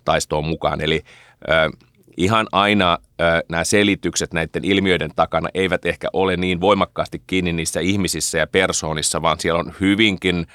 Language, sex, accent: Finnish, male, native